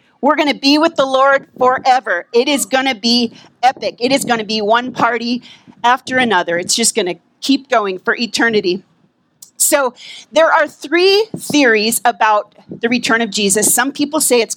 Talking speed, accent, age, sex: 185 wpm, American, 40-59, female